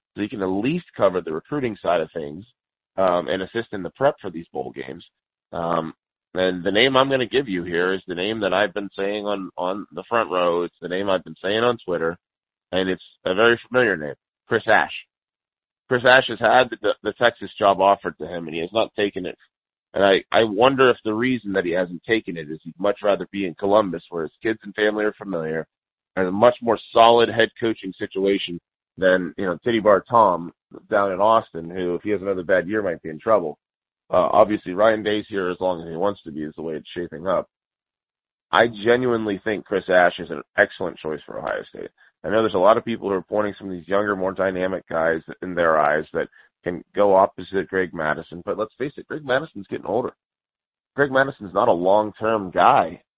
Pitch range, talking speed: 90-110 Hz, 225 wpm